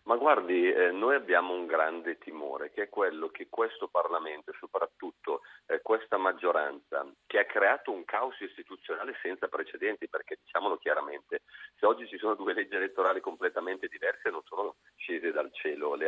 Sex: male